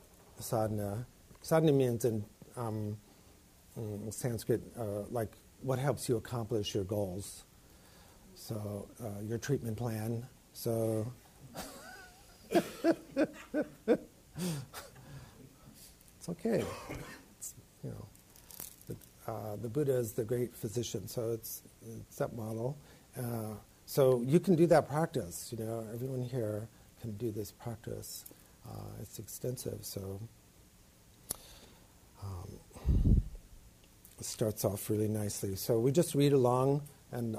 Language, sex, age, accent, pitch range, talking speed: English, male, 50-69, American, 105-125 Hz, 110 wpm